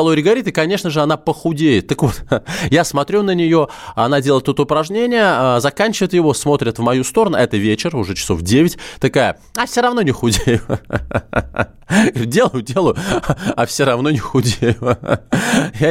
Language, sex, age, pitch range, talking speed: Russian, male, 20-39, 110-155 Hz, 160 wpm